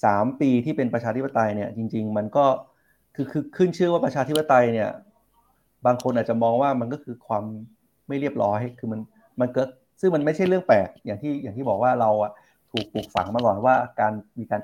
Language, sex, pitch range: Thai, male, 105-130 Hz